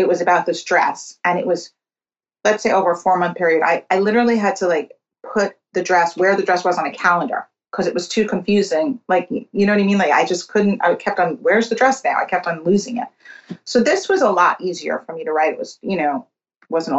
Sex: female